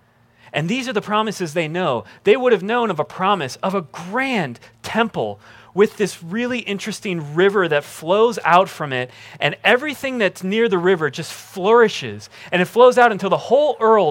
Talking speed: 185 wpm